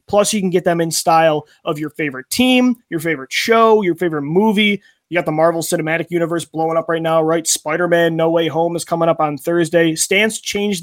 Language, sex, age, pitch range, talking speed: English, male, 20-39, 155-180 Hz, 220 wpm